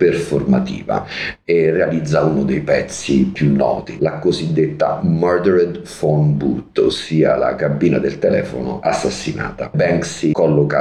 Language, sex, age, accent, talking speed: Italian, male, 40-59, native, 115 wpm